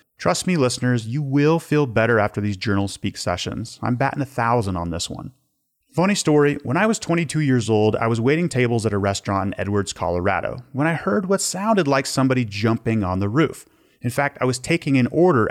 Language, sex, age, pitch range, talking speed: English, male, 30-49, 110-145 Hz, 215 wpm